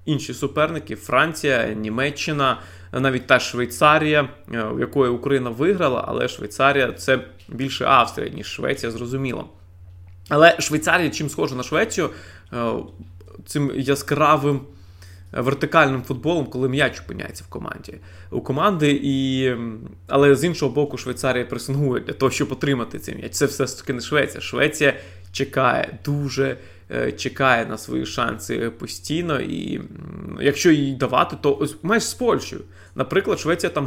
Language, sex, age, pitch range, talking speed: Ukrainian, male, 20-39, 115-145 Hz, 130 wpm